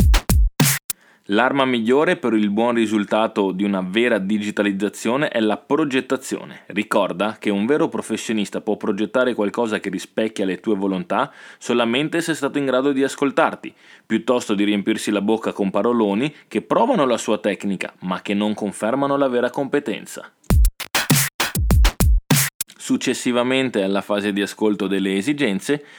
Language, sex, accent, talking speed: Italian, male, native, 140 wpm